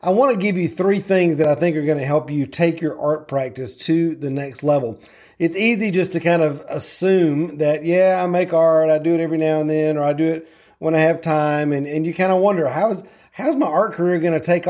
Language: English